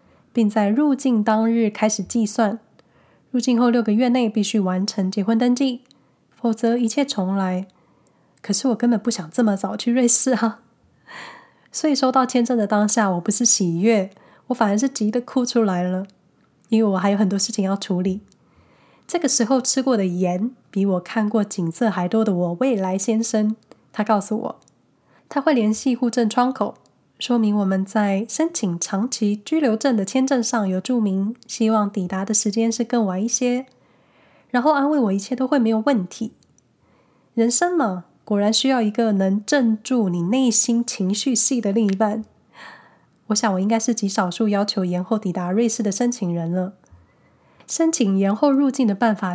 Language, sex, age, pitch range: Chinese, female, 10-29, 200-245 Hz